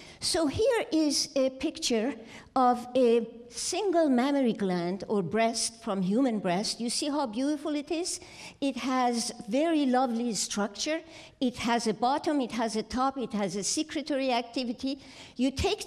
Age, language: 60-79, English